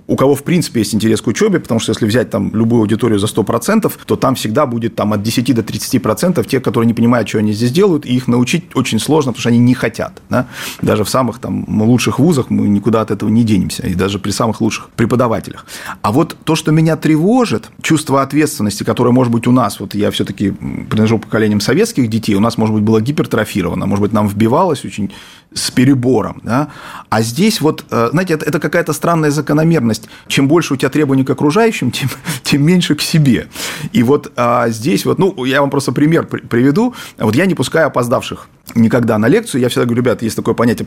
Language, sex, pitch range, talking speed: Russian, male, 110-150 Hz, 210 wpm